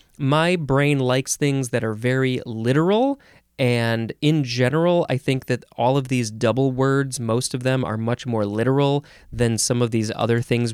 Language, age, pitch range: English, 20-39, 110-155 Hz